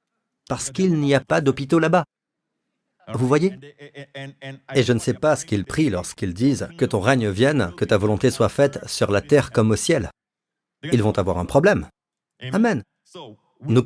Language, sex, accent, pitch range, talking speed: French, male, French, 115-165 Hz, 180 wpm